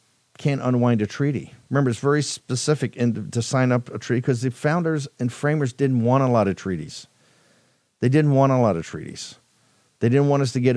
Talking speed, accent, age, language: 215 wpm, American, 50-69, English